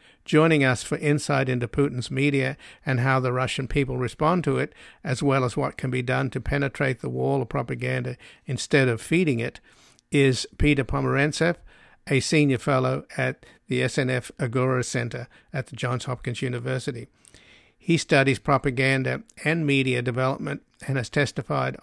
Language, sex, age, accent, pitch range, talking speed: English, male, 50-69, American, 125-145 Hz, 155 wpm